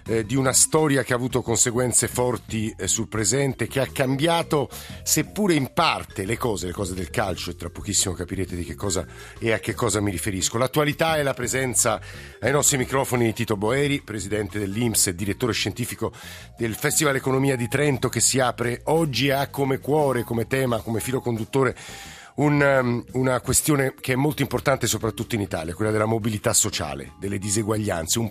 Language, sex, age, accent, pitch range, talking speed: Italian, male, 50-69, native, 100-125 Hz, 180 wpm